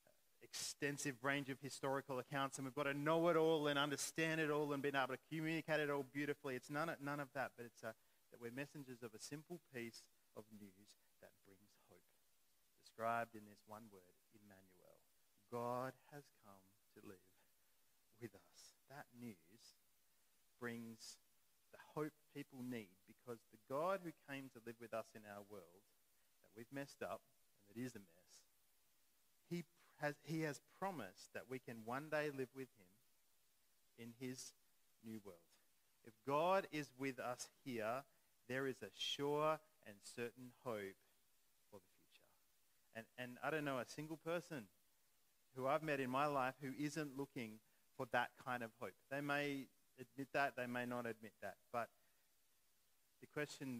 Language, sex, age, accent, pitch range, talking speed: English, male, 40-59, Australian, 115-145 Hz, 170 wpm